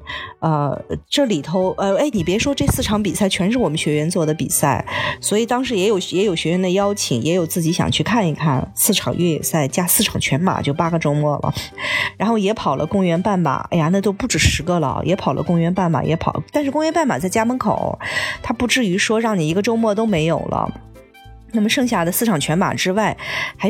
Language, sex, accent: Chinese, female, native